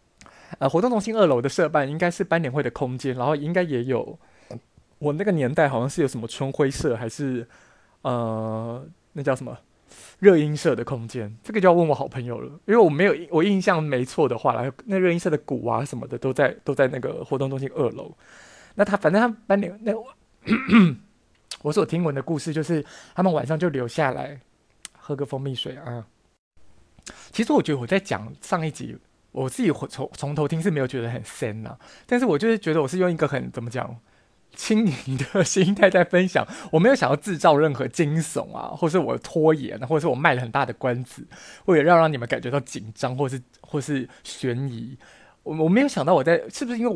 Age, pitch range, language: 20-39, 125-170 Hz, Chinese